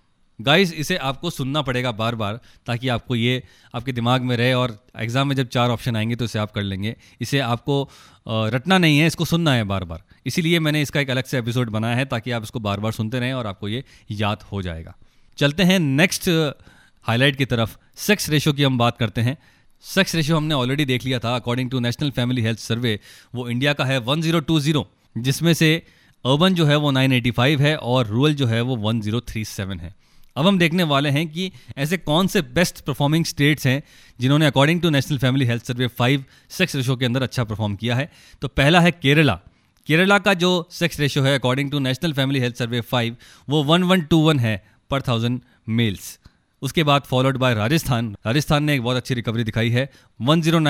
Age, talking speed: 20-39, 205 wpm